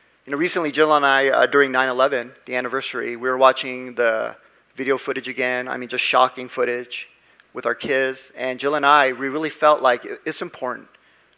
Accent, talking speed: American, 190 wpm